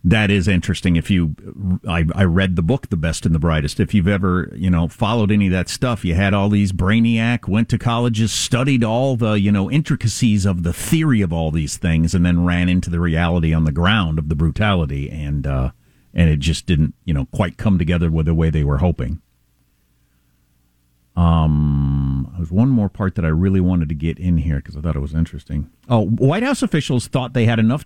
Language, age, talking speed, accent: English, 50-69, 220 wpm, American